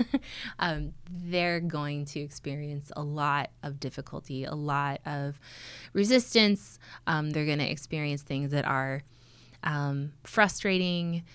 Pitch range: 135-165 Hz